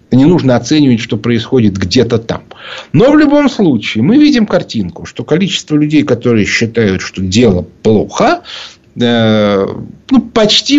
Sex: male